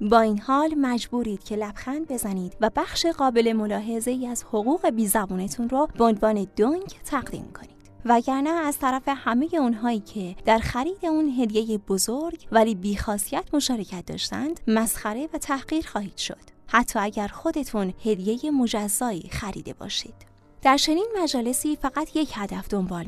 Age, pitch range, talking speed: 20-39, 210-275 Hz, 145 wpm